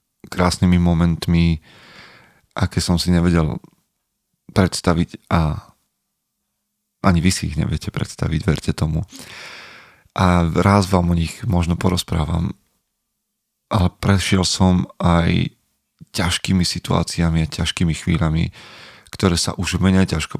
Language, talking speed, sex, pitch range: Slovak, 110 wpm, male, 85-95 Hz